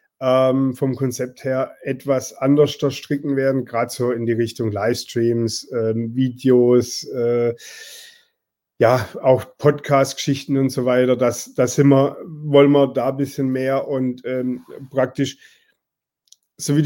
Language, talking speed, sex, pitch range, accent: German, 135 wpm, male, 135-160 Hz, German